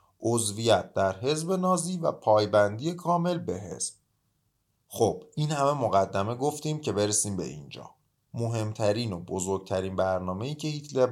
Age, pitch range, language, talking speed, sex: 30-49, 95-130 Hz, Persian, 135 wpm, male